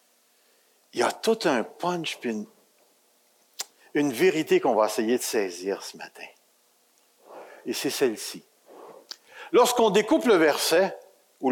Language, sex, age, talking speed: French, male, 60-79, 130 wpm